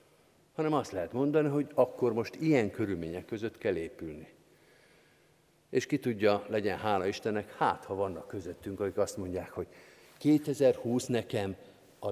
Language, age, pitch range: Hungarian, 50-69, 110-145 Hz